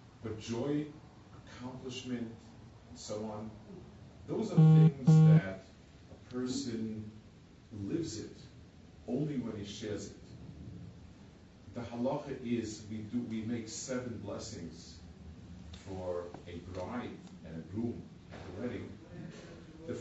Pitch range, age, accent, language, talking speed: 90-125 Hz, 50-69, American, English, 110 wpm